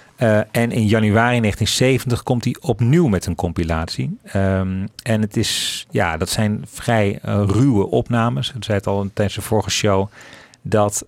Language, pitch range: Dutch, 95-110 Hz